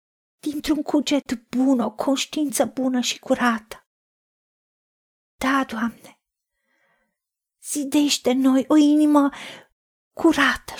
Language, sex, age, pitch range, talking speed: Romanian, female, 40-59, 255-310 Hz, 85 wpm